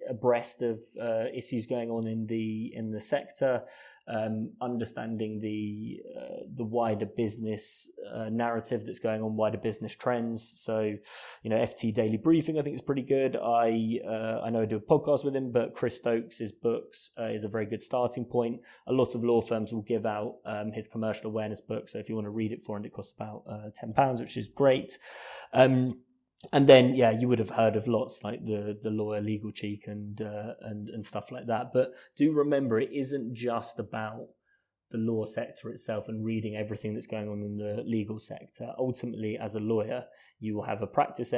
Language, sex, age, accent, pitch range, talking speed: English, male, 20-39, British, 110-125 Hz, 205 wpm